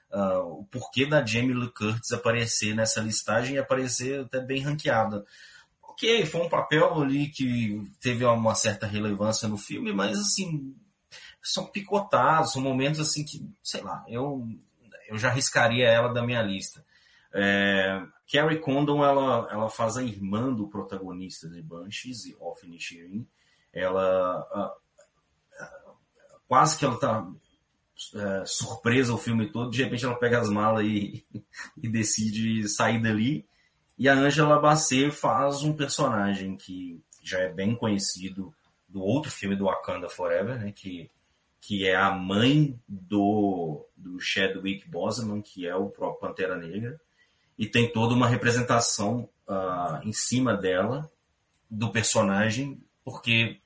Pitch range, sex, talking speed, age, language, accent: 100-130 Hz, male, 140 wpm, 30-49, Portuguese, Brazilian